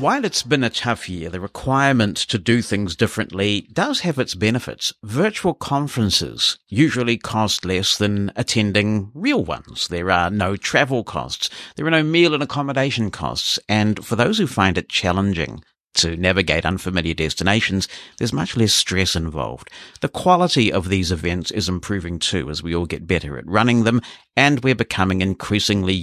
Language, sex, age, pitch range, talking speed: English, male, 50-69, 90-115 Hz, 170 wpm